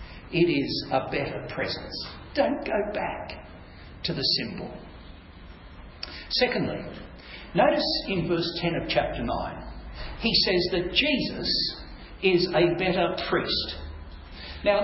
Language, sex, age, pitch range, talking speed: English, male, 60-79, 150-205 Hz, 115 wpm